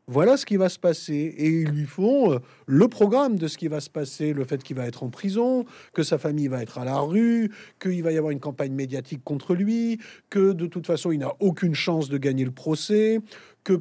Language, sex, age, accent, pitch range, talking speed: French, male, 50-69, French, 150-200 Hz, 240 wpm